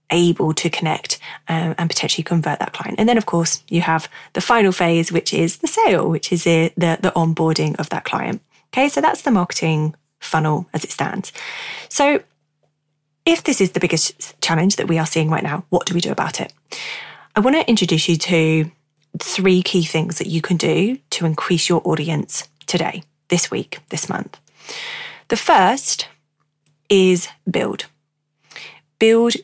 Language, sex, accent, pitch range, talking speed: English, female, British, 155-195 Hz, 175 wpm